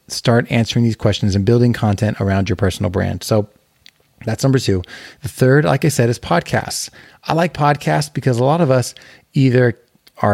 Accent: American